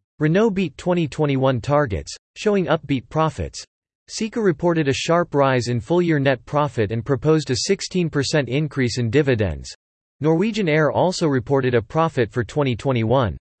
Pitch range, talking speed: 125-160 Hz, 135 wpm